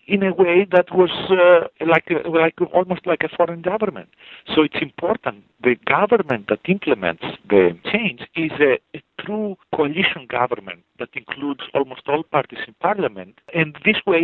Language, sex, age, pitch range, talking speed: English, male, 50-69, 120-175 Hz, 165 wpm